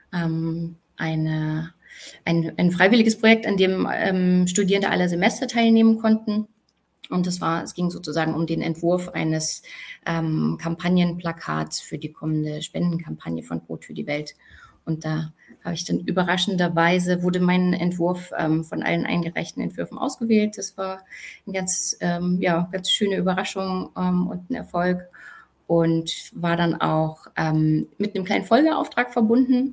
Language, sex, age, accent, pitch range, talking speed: German, female, 20-39, German, 165-190 Hz, 145 wpm